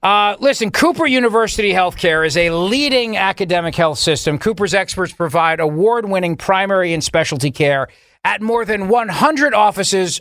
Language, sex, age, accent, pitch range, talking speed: English, male, 40-59, American, 150-205 Hz, 145 wpm